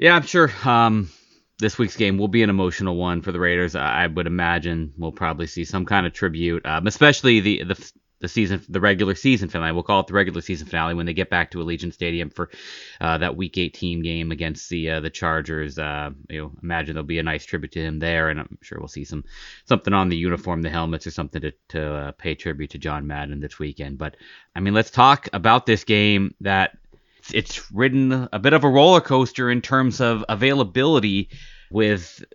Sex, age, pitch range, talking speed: male, 30-49, 90-120 Hz, 220 wpm